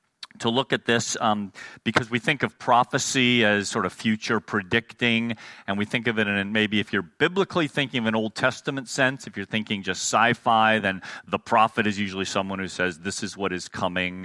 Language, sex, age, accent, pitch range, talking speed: English, male, 40-59, American, 110-135 Hz, 205 wpm